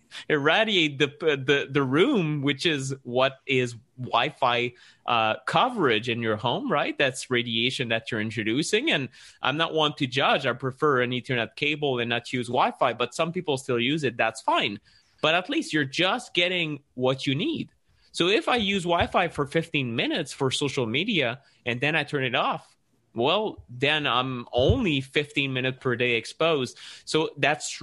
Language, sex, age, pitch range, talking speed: English, male, 30-49, 120-150 Hz, 175 wpm